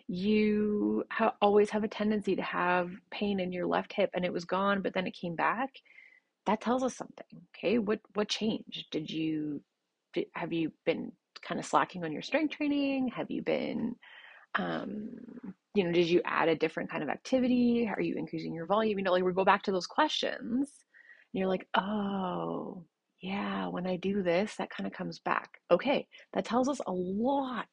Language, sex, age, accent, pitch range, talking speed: English, female, 30-49, American, 170-235 Hz, 195 wpm